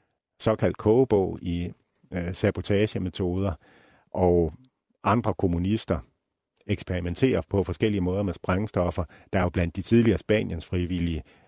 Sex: male